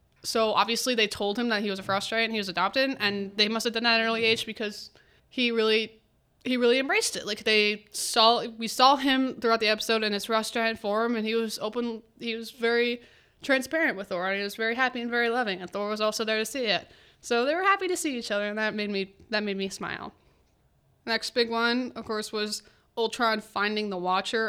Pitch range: 205-240 Hz